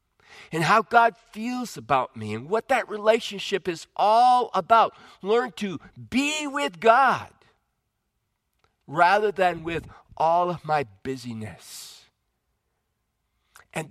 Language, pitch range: English, 130-180 Hz